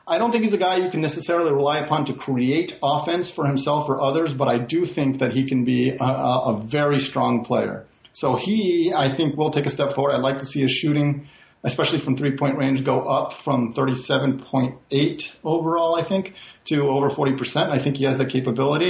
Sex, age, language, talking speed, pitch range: male, 40-59, English, 215 wpm, 130-155 Hz